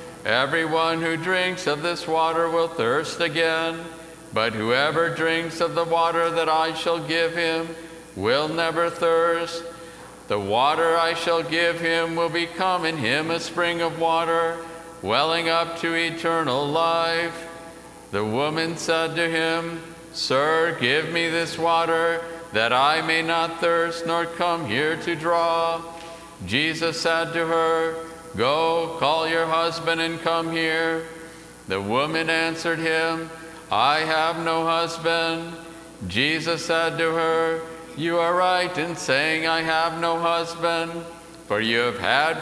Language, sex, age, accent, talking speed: English, male, 50-69, American, 140 wpm